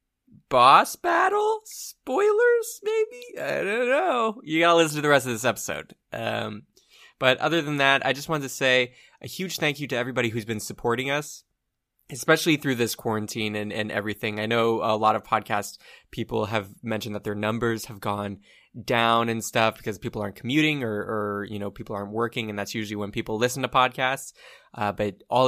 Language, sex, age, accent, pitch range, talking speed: English, male, 20-39, American, 110-135 Hz, 195 wpm